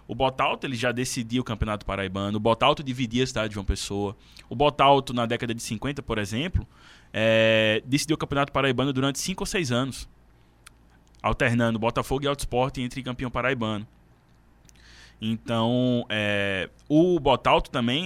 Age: 20-39